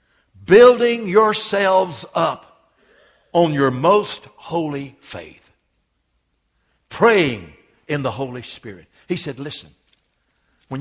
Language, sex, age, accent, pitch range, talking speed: English, male, 60-79, American, 140-190 Hz, 95 wpm